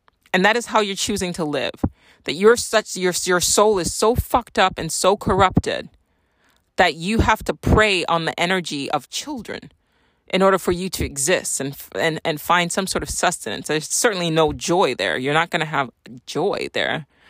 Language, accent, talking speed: English, American, 200 wpm